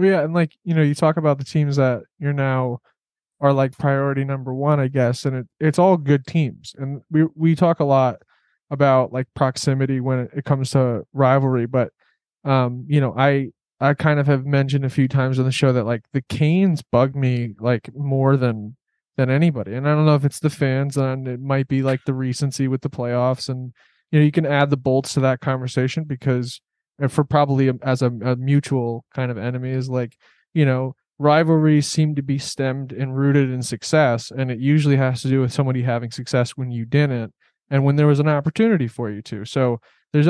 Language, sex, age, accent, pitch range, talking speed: English, male, 20-39, American, 125-145 Hz, 215 wpm